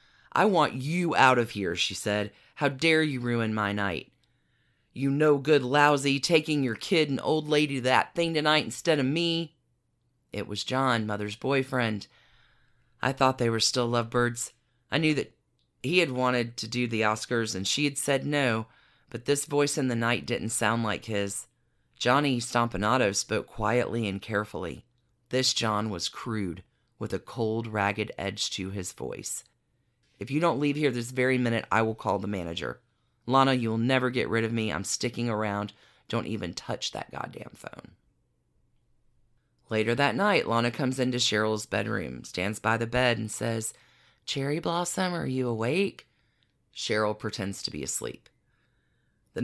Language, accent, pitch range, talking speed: English, American, 110-140 Hz, 170 wpm